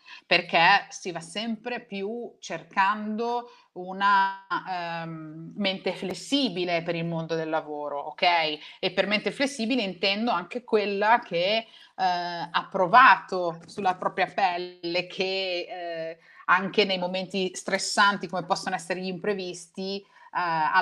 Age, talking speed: 30-49, 110 wpm